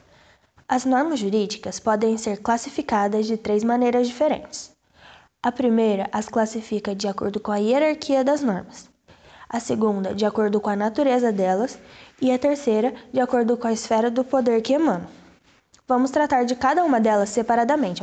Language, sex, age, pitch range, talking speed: Portuguese, female, 10-29, 210-260 Hz, 160 wpm